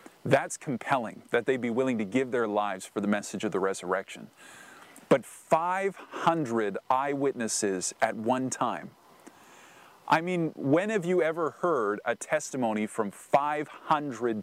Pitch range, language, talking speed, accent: 120-160 Hz, English, 135 wpm, American